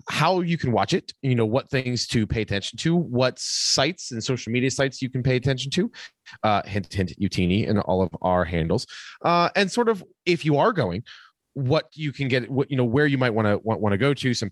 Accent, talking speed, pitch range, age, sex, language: American, 240 wpm, 105-150 Hz, 30-49, male, English